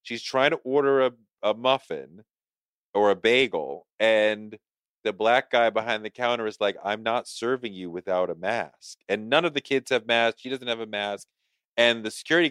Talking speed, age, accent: 195 wpm, 40-59, American